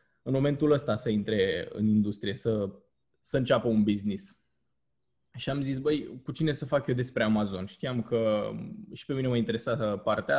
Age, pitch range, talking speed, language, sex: 20-39, 110-155 Hz, 180 wpm, Romanian, male